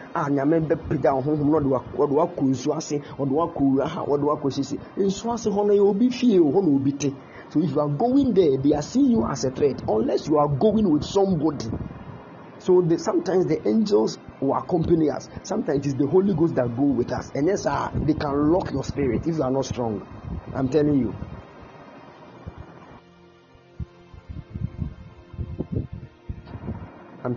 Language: English